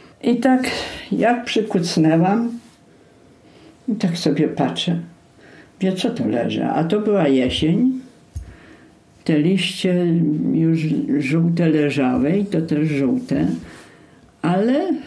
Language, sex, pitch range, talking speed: Polish, female, 160-240 Hz, 100 wpm